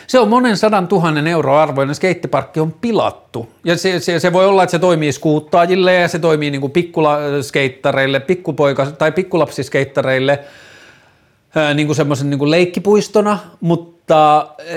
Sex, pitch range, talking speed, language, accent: male, 130-165 Hz, 125 wpm, Finnish, native